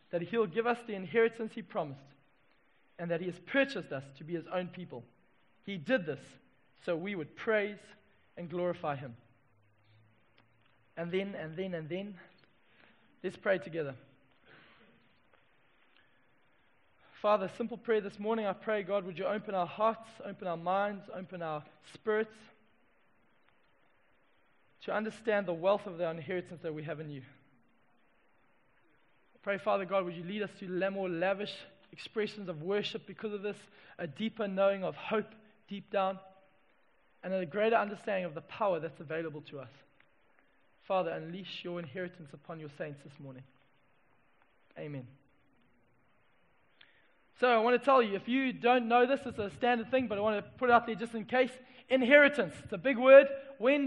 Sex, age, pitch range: male, 20-39, 165-220 Hz